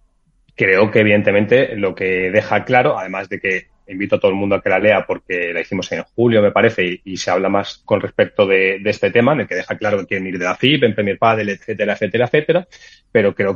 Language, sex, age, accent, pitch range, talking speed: Spanish, male, 30-49, Spanish, 100-125 Hz, 250 wpm